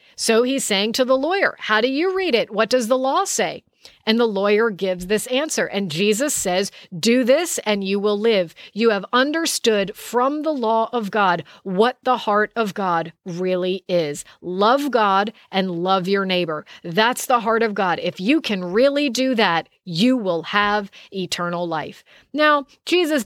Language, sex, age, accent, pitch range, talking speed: English, female, 40-59, American, 200-260 Hz, 180 wpm